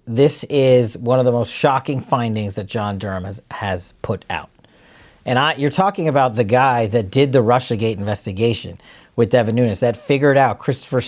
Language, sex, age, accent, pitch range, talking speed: English, male, 40-59, American, 120-170 Hz, 185 wpm